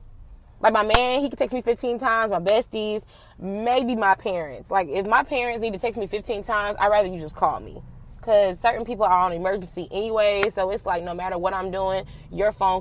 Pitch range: 185-245 Hz